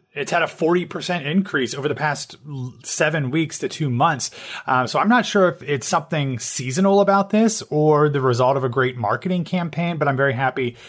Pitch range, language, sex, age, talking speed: 125-160 Hz, English, male, 30-49, 200 wpm